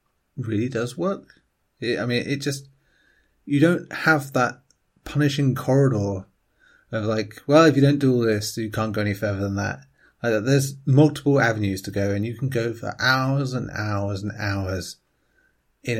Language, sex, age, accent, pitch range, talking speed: English, male, 30-49, British, 100-125 Hz, 165 wpm